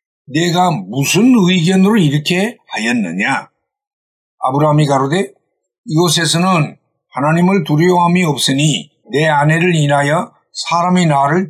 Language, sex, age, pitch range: Korean, male, 60-79, 150-185 Hz